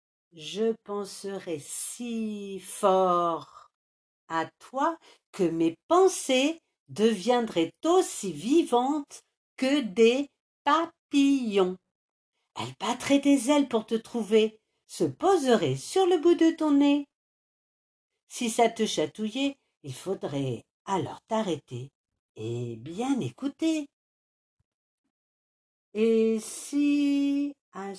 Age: 50-69